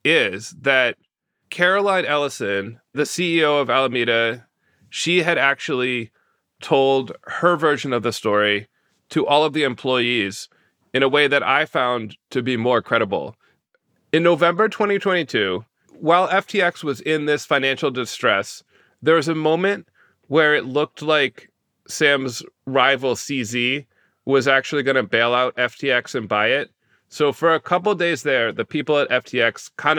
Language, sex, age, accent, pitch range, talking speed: English, male, 30-49, American, 120-155 Hz, 150 wpm